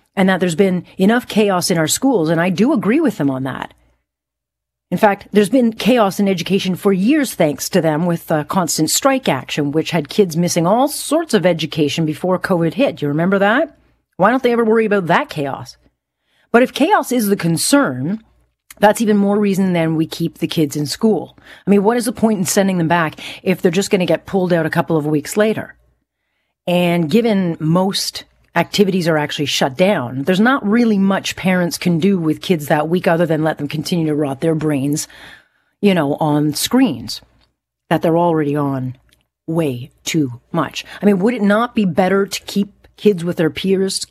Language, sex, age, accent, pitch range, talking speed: English, female, 40-59, American, 160-210 Hz, 200 wpm